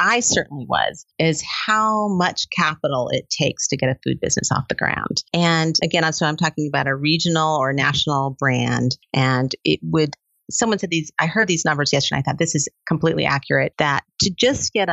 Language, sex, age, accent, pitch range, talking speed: English, female, 40-59, American, 140-170 Hz, 200 wpm